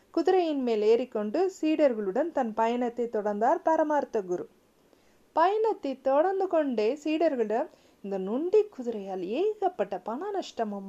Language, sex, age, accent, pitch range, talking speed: Tamil, female, 40-59, native, 215-325 Hz, 105 wpm